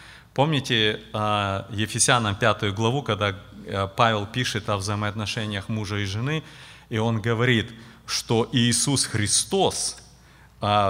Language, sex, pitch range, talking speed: Russian, male, 110-170 Hz, 115 wpm